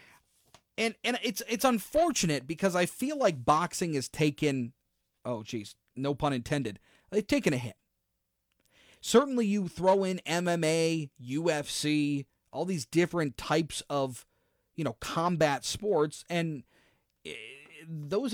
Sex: male